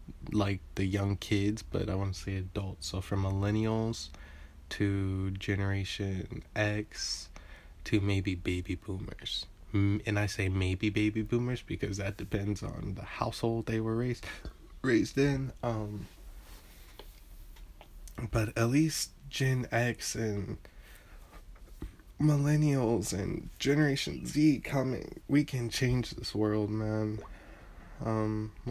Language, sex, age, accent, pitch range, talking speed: English, male, 20-39, American, 95-110 Hz, 115 wpm